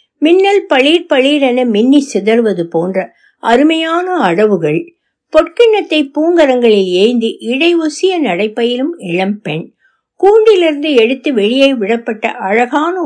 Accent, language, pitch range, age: native, Tamil, 200-320 Hz, 60-79